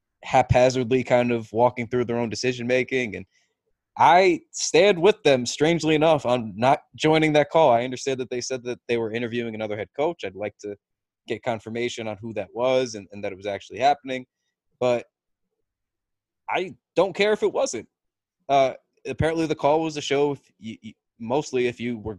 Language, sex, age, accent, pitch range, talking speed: English, male, 20-39, American, 115-140 Hz, 185 wpm